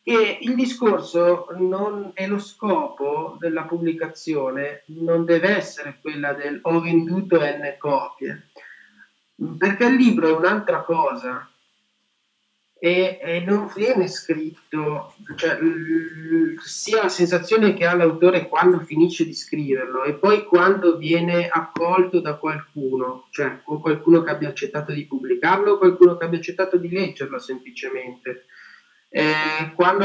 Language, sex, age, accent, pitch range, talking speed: Italian, male, 30-49, native, 145-180 Hz, 130 wpm